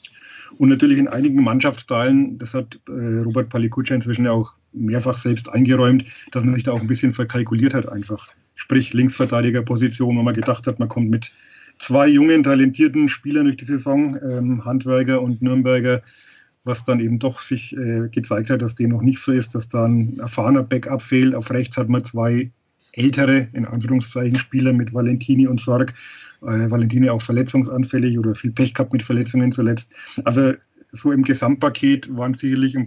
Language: German